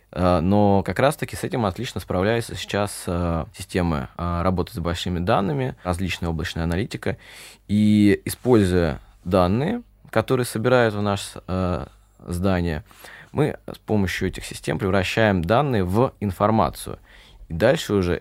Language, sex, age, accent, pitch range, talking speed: Russian, male, 20-39, native, 90-110 Hz, 130 wpm